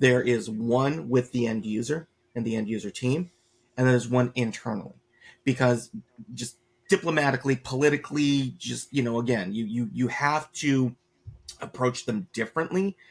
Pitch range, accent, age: 115-140 Hz, American, 30-49